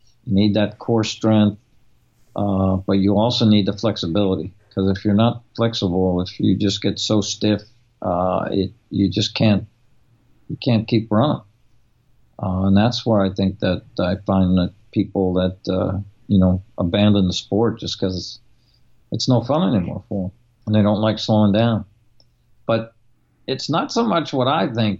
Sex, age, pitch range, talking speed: male, 50-69, 100-120 Hz, 175 wpm